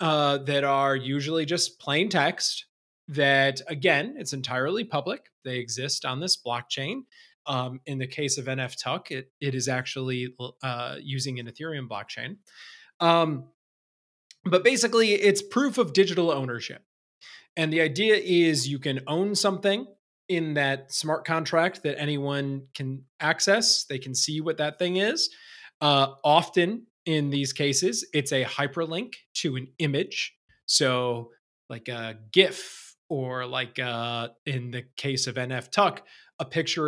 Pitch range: 130-175 Hz